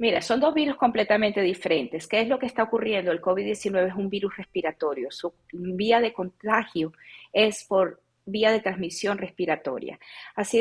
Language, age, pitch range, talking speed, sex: Spanish, 40-59, 195-245 Hz, 165 wpm, female